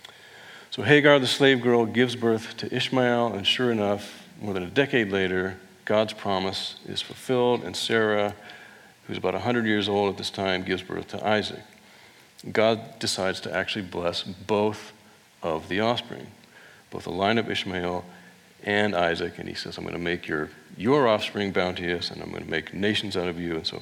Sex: male